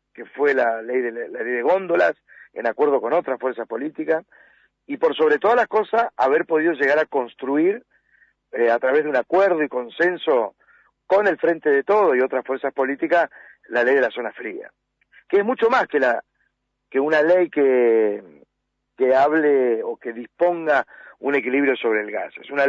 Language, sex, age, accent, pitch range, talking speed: Spanish, male, 40-59, Argentinian, 130-195 Hz, 180 wpm